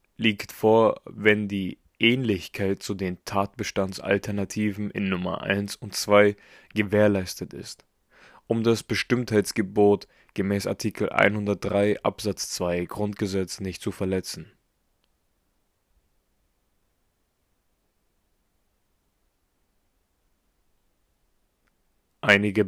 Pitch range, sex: 90-105 Hz, male